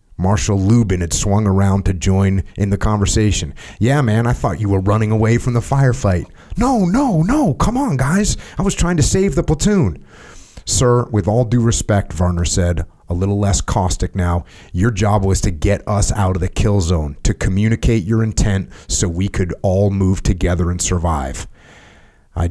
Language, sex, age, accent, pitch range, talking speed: English, male, 30-49, American, 80-105 Hz, 185 wpm